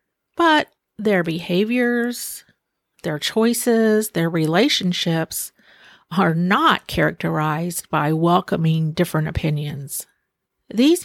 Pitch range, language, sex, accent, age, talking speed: 165-210 Hz, English, female, American, 50-69, 80 wpm